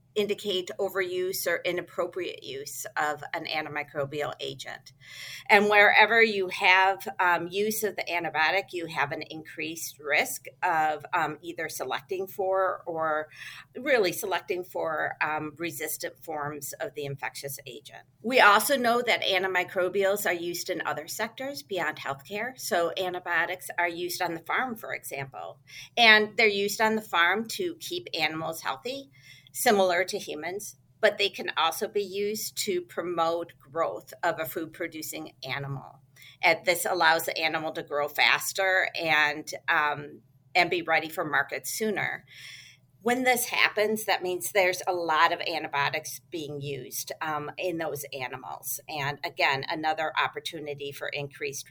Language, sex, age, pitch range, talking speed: English, female, 40-59, 150-200 Hz, 145 wpm